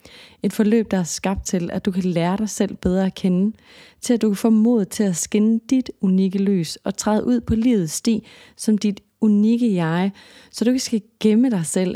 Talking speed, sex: 220 wpm, female